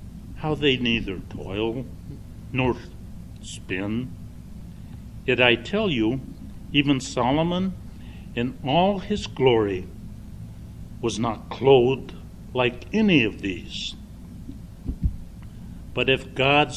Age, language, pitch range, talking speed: 60-79, English, 100-135 Hz, 95 wpm